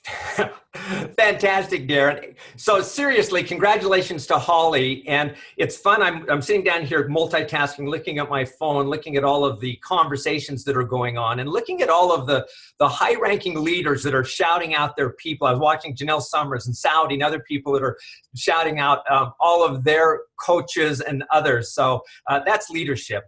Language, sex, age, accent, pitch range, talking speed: English, male, 50-69, American, 130-165 Hz, 185 wpm